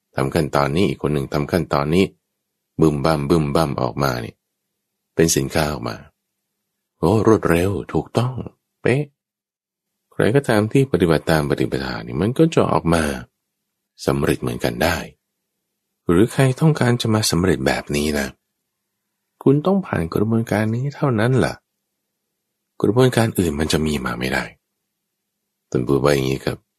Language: English